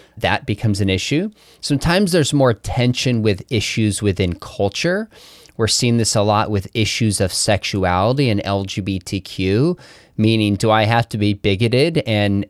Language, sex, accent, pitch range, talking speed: English, male, American, 105-140 Hz, 150 wpm